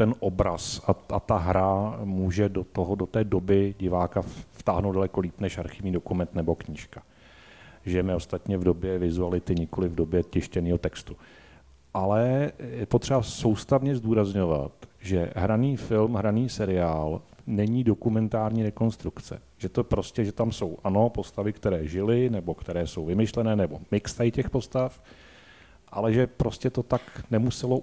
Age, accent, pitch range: 40-59, native, 95-115 Hz